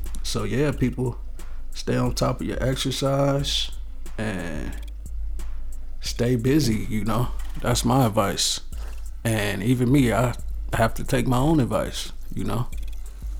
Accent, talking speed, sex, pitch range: American, 130 wpm, male, 110-145 Hz